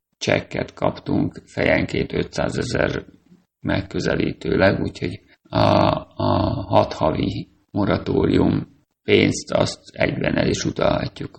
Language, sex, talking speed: Hungarian, male, 95 wpm